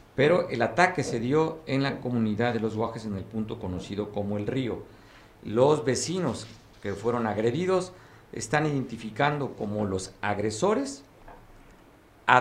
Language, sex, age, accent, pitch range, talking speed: Spanish, male, 50-69, Mexican, 110-135 Hz, 140 wpm